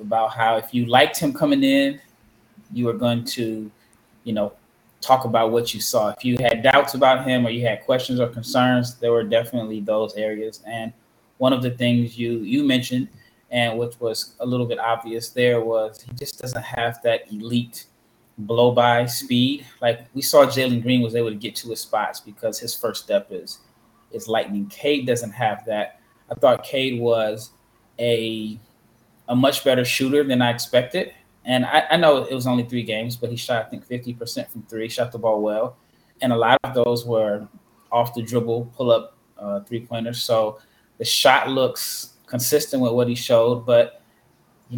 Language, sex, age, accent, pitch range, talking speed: English, male, 20-39, American, 115-125 Hz, 190 wpm